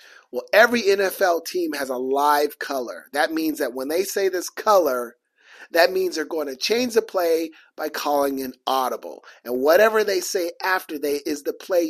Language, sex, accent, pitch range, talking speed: English, male, American, 150-225 Hz, 185 wpm